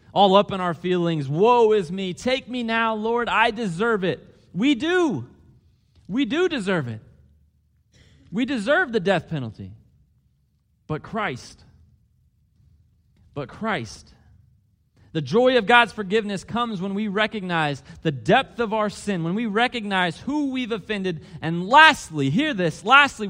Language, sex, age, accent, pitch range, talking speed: English, male, 30-49, American, 160-225 Hz, 140 wpm